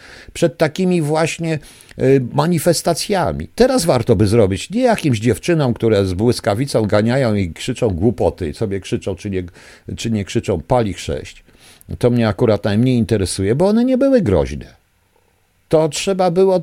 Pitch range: 110-175 Hz